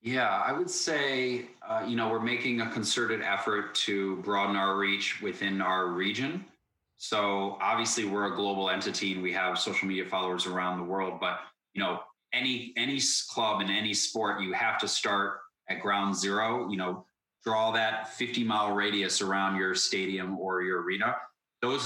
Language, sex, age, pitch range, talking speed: Dutch, male, 20-39, 95-115 Hz, 175 wpm